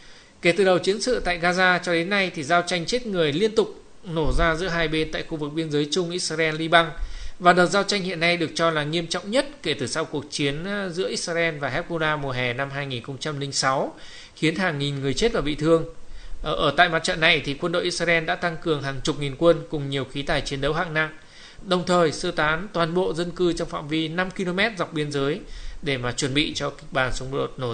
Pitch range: 145-180 Hz